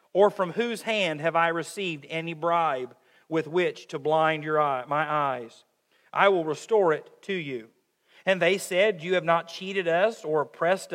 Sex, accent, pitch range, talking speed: male, American, 160-205 Hz, 180 wpm